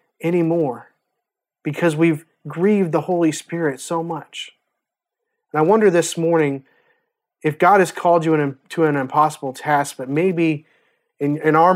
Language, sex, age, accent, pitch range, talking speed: English, male, 30-49, American, 155-195 Hz, 150 wpm